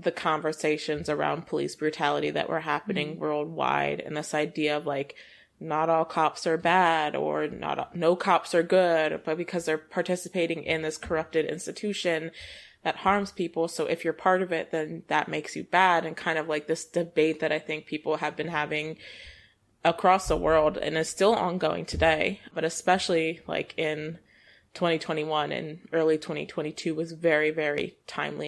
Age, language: 20-39, English